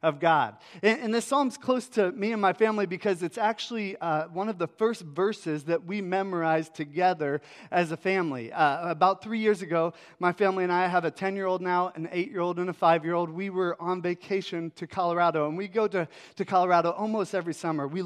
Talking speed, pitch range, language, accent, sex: 205 wpm, 170-215 Hz, English, American, male